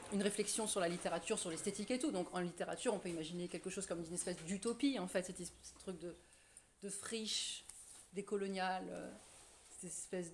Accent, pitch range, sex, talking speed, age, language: French, 185-225 Hz, female, 180 wpm, 30-49, French